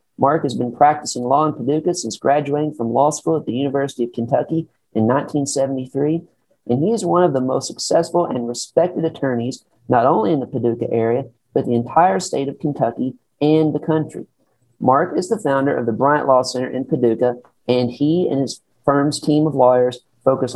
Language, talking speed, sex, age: English, 190 wpm, male, 40-59